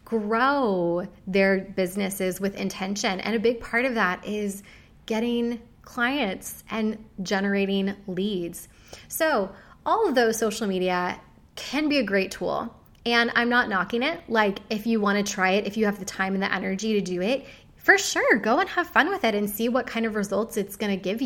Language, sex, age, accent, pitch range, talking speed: English, female, 20-39, American, 200-260 Hz, 195 wpm